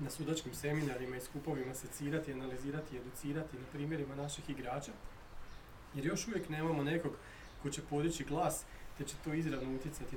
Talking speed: 160 wpm